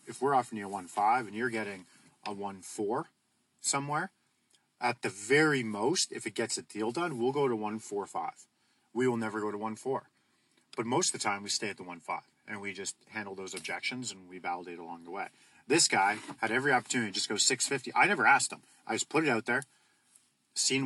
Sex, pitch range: male, 100-120 Hz